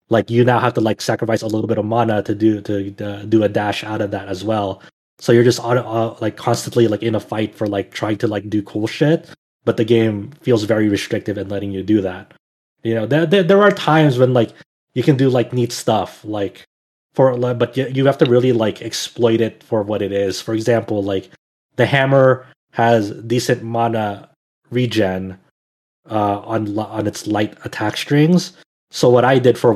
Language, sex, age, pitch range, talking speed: English, male, 20-39, 105-125 Hz, 210 wpm